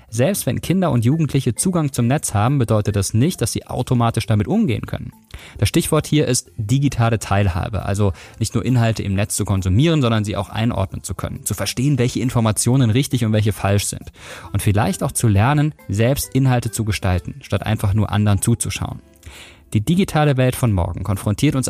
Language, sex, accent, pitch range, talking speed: German, male, German, 100-130 Hz, 190 wpm